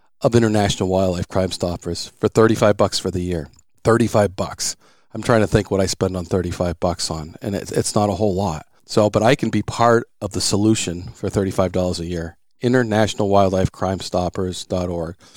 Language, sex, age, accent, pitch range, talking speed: English, male, 40-59, American, 90-110 Hz, 180 wpm